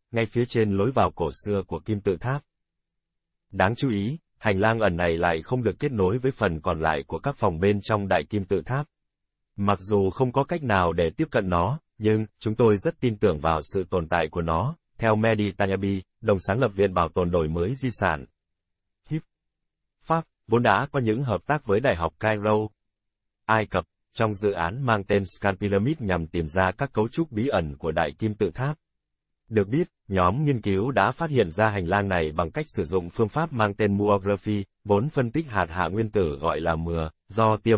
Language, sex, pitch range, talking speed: Vietnamese, male, 90-115 Hz, 220 wpm